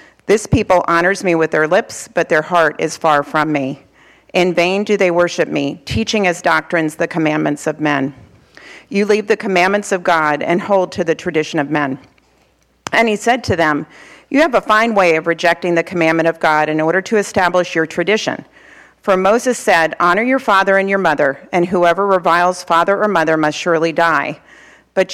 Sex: female